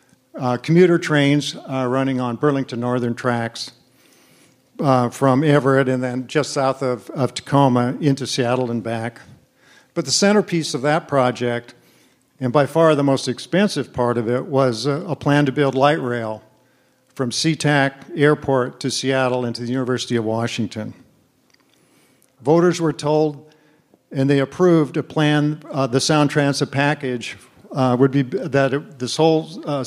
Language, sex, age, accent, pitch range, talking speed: English, male, 50-69, American, 125-150 Hz, 155 wpm